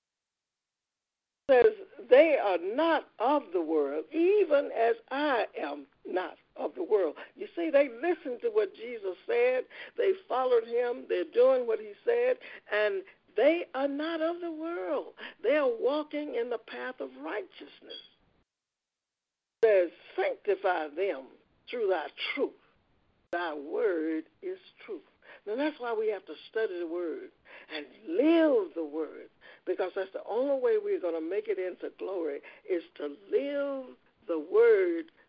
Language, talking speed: English, 145 wpm